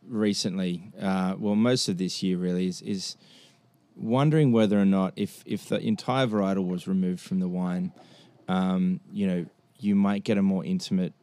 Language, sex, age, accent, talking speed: English, male, 20-39, Australian, 175 wpm